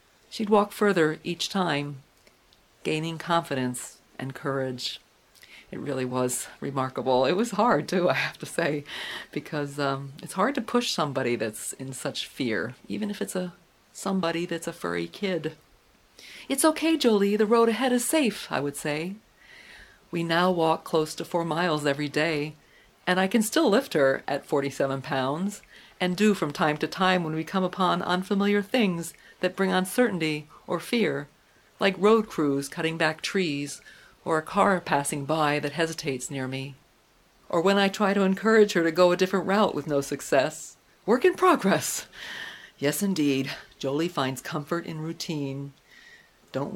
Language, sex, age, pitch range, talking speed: English, female, 40-59, 145-200 Hz, 165 wpm